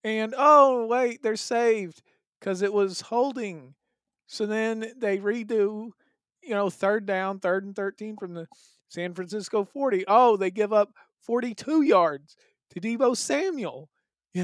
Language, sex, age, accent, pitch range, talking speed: English, male, 40-59, American, 175-215 Hz, 145 wpm